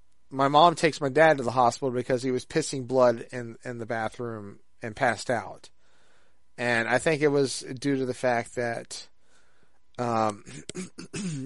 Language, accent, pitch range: English, American, 125-165 Hz